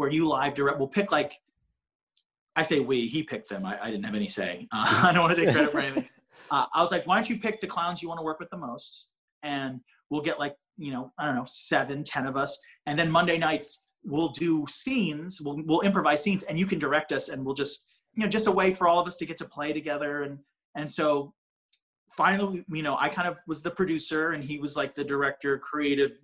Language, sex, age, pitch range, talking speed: English, male, 30-49, 135-170 Hz, 250 wpm